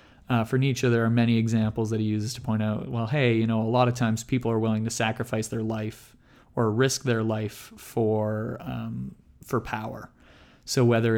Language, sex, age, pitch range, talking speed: English, male, 30-49, 110-120 Hz, 205 wpm